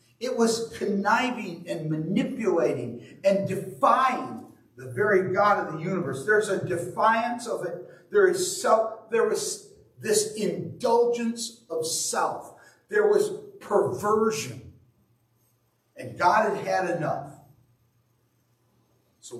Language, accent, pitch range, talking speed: English, American, 120-180 Hz, 110 wpm